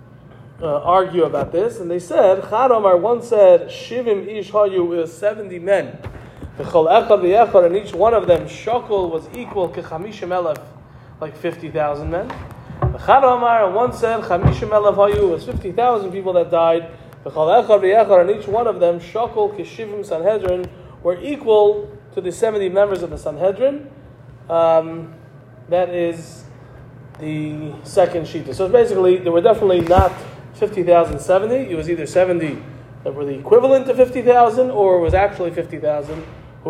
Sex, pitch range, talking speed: male, 140-200 Hz, 145 wpm